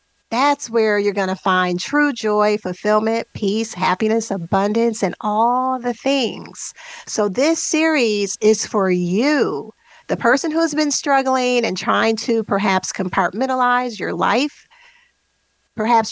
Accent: American